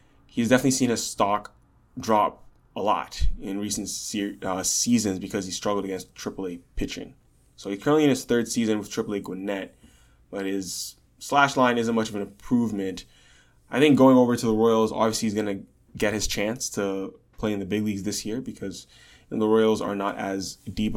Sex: male